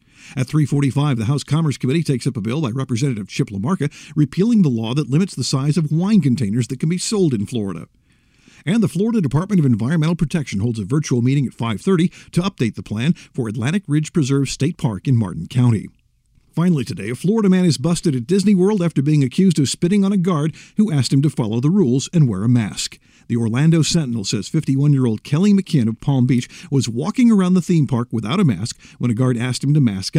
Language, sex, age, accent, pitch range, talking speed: English, male, 50-69, American, 125-170 Hz, 220 wpm